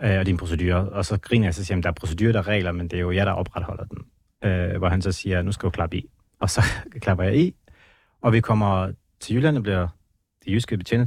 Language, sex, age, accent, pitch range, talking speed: Danish, male, 30-49, native, 95-115 Hz, 265 wpm